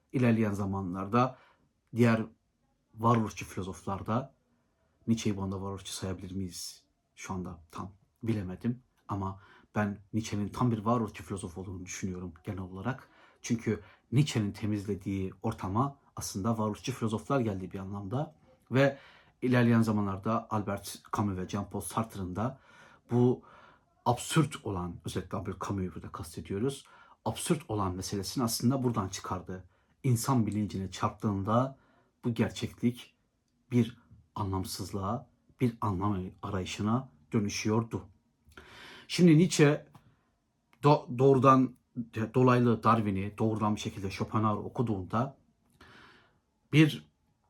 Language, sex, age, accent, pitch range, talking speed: Turkish, male, 60-79, native, 100-120 Hz, 105 wpm